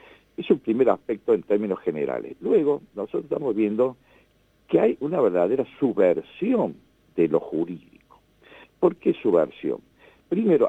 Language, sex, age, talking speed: Spanish, male, 60-79, 130 wpm